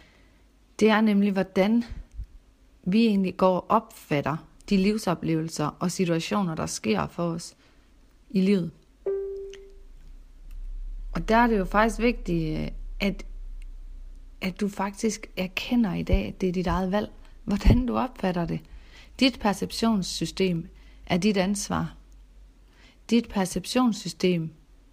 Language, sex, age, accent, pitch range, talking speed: Danish, female, 40-59, native, 180-235 Hz, 120 wpm